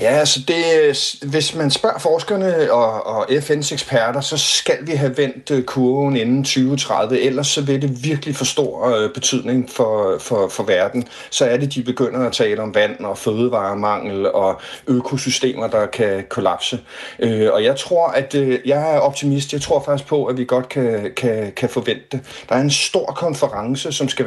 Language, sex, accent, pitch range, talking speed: Danish, male, native, 125-145 Hz, 185 wpm